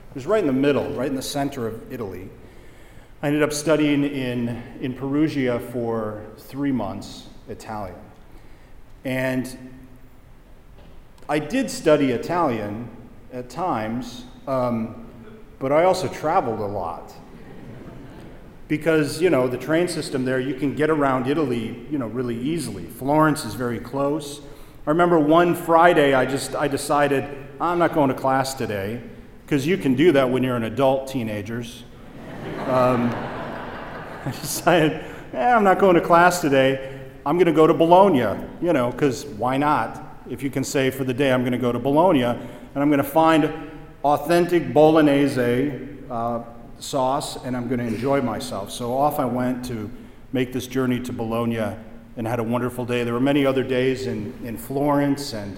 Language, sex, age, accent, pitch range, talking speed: English, male, 40-59, American, 120-145 Hz, 165 wpm